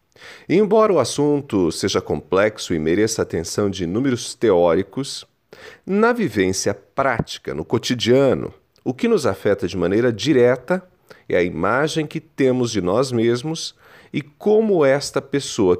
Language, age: Portuguese, 40-59